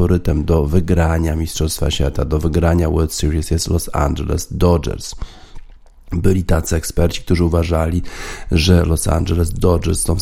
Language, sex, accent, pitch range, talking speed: Polish, male, native, 80-90 Hz, 135 wpm